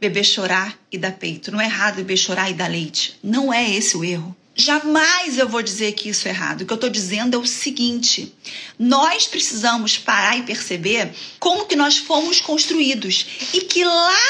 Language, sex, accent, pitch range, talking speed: Portuguese, female, Brazilian, 230-300 Hz, 195 wpm